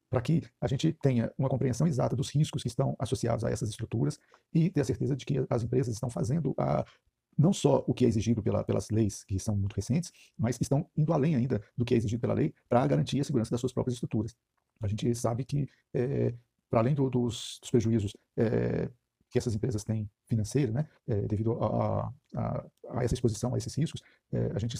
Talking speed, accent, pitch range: 220 wpm, Brazilian, 115-135 Hz